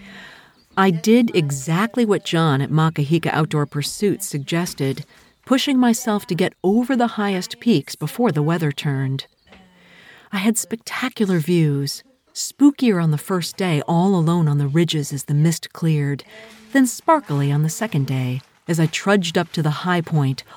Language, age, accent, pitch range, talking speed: English, 50-69, American, 145-210 Hz, 160 wpm